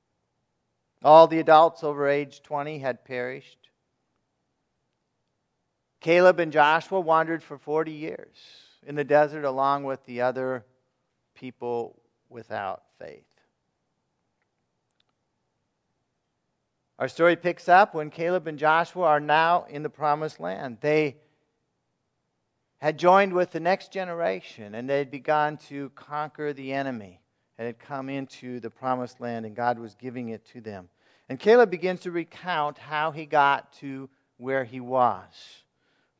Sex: male